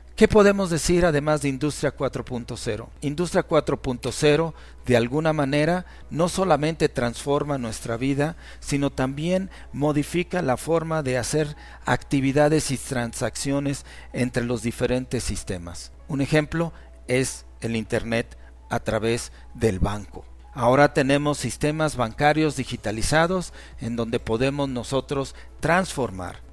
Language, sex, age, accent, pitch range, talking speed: Spanish, male, 40-59, Mexican, 120-155 Hz, 115 wpm